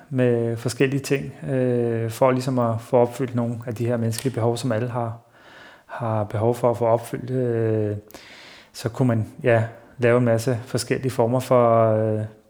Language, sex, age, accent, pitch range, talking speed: Danish, male, 30-49, native, 115-130 Hz, 175 wpm